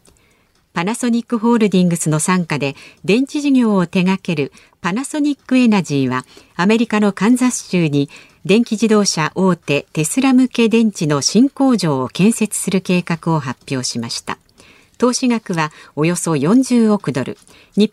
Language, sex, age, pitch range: Japanese, female, 50-69, 150-235 Hz